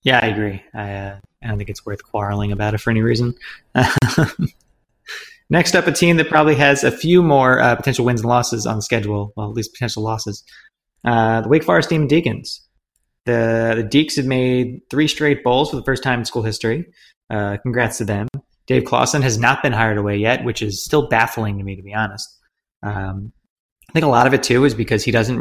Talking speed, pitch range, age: 220 wpm, 110-130 Hz, 20-39